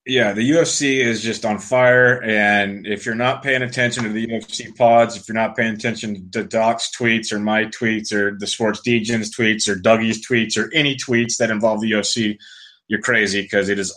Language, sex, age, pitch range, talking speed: English, male, 20-39, 100-115 Hz, 205 wpm